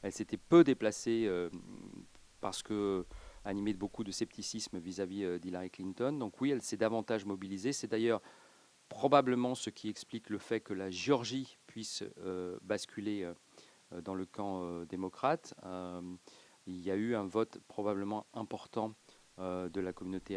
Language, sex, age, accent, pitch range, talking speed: French, male, 40-59, French, 95-110 Hz, 140 wpm